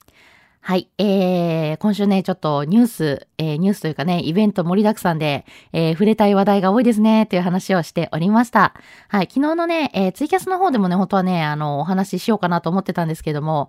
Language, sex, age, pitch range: Japanese, female, 20-39, 170-215 Hz